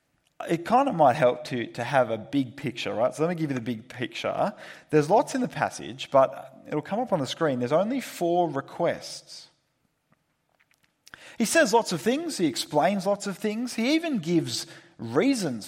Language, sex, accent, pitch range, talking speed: English, male, Australian, 125-185 Hz, 190 wpm